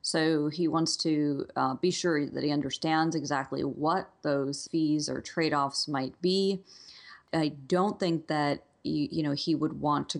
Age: 40-59